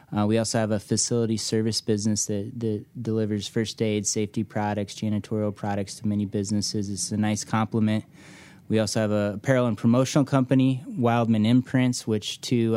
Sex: male